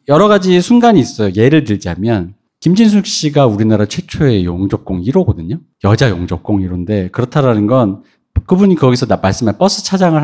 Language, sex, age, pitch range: Korean, male, 40-59, 105-165 Hz